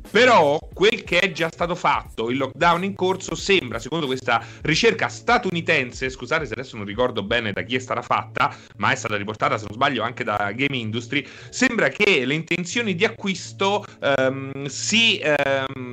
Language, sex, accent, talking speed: Italian, male, native, 170 wpm